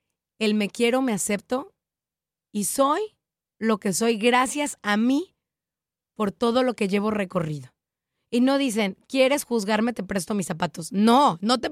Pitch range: 215-295 Hz